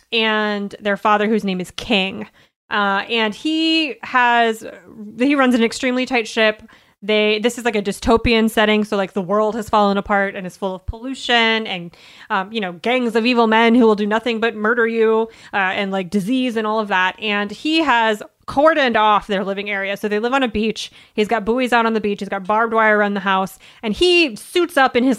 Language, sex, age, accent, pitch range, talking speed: English, female, 20-39, American, 205-240 Hz, 220 wpm